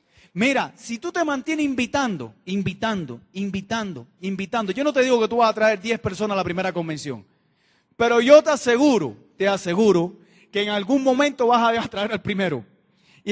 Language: Spanish